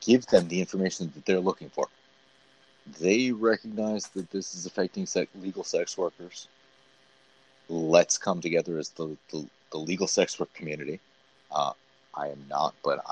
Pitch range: 85-100 Hz